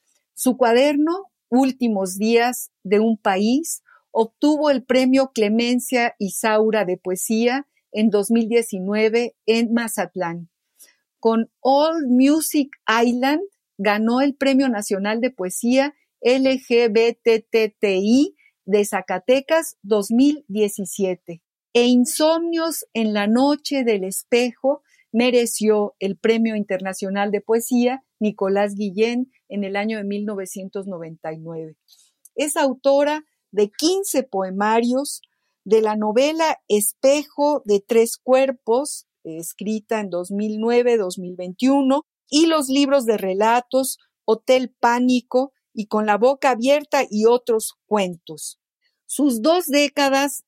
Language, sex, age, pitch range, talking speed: Spanish, female, 50-69, 210-270 Hz, 100 wpm